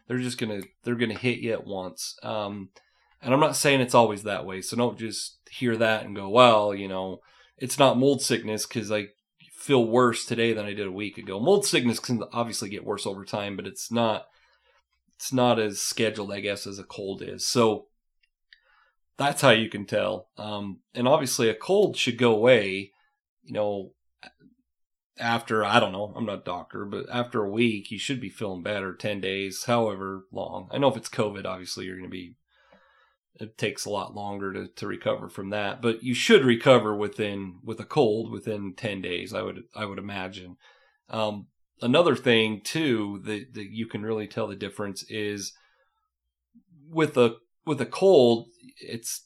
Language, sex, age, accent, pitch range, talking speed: English, male, 30-49, American, 100-120 Hz, 190 wpm